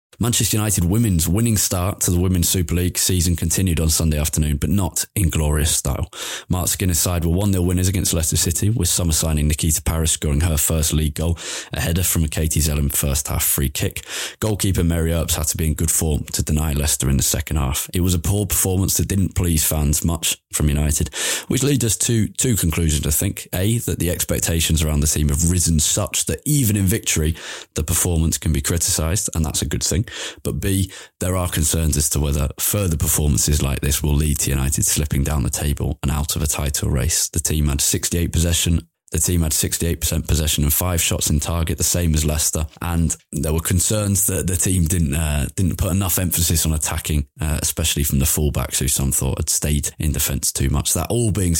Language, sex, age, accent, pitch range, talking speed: English, male, 20-39, British, 75-90 Hz, 215 wpm